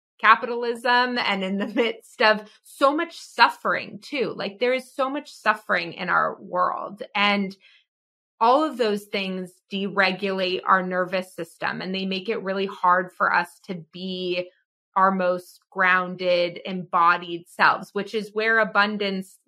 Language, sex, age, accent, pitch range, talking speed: English, female, 20-39, American, 185-225 Hz, 145 wpm